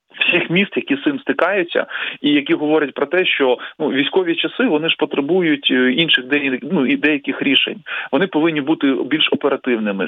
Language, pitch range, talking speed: Ukrainian, 125-155 Hz, 175 wpm